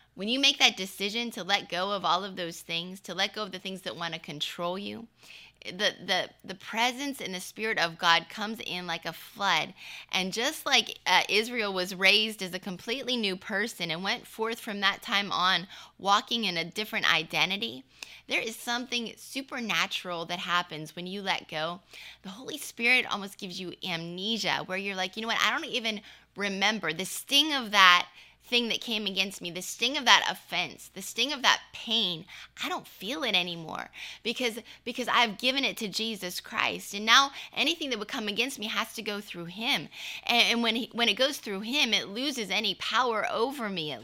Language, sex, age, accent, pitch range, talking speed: English, female, 20-39, American, 185-235 Hz, 205 wpm